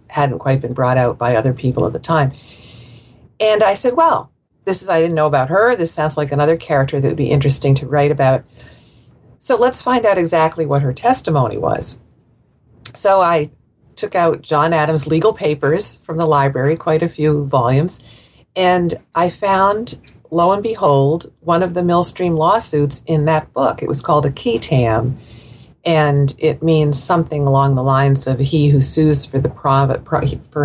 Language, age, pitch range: English, 50-69, 135-160 Hz